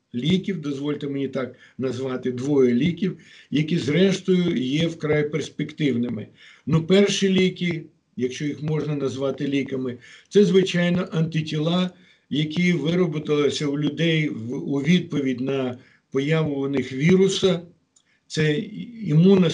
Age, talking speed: 60-79, 110 wpm